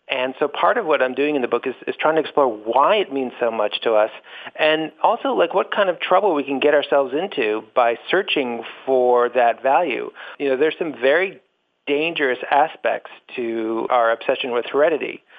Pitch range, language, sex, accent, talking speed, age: 120-140 Hz, English, male, American, 200 wpm, 50-69